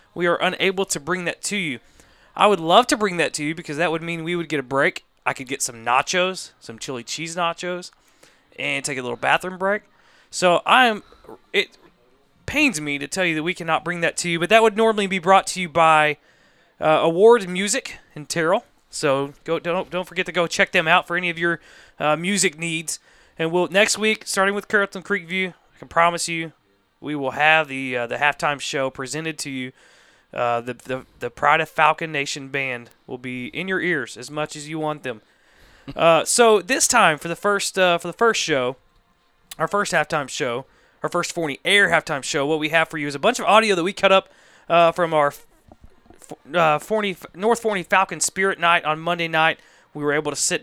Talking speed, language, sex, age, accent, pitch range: 220 wpm, English, male, 20-39, American, 145-185 Hz